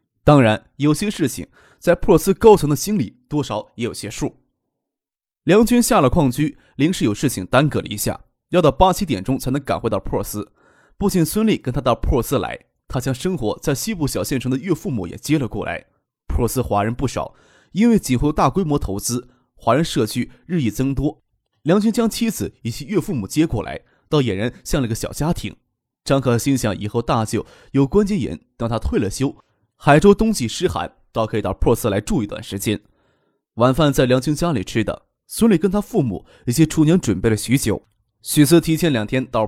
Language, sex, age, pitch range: Chinese, male, 20-39, 115-170 Hz